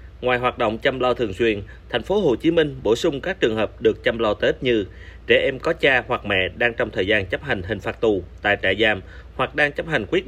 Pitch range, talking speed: 105-155 Hz, 265 wpm